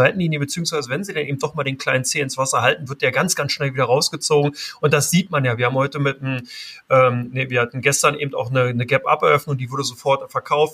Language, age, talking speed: German, 30-49, 250 wpm